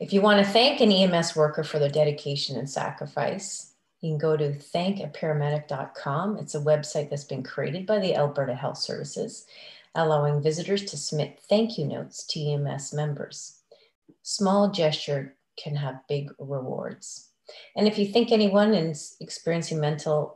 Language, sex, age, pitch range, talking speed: English, female, 40-59, 150-195 Hz, 155 wpm